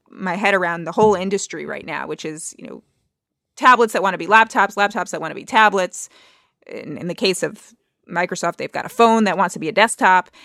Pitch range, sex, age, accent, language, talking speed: 175-230 Hz, female, 20-39, American, English, 230 wpm